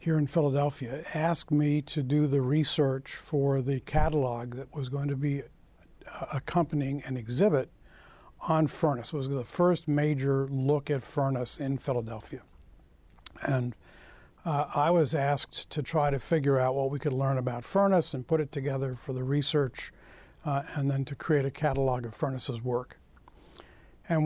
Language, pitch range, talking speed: English, 135-155 Hz, 165 wpm